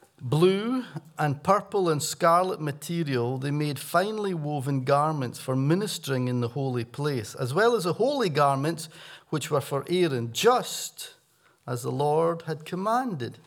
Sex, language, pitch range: male, English, 140-185 Hz